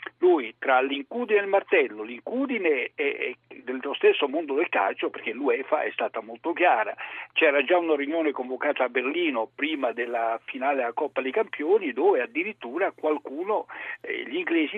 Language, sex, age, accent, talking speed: Italian, male, 60-79, native, 155 wpm